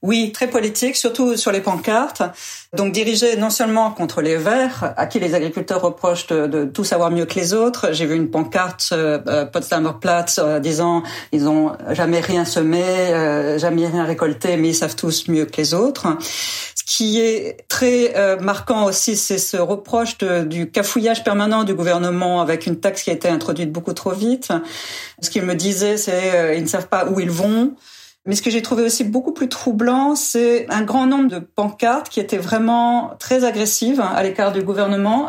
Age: 40-59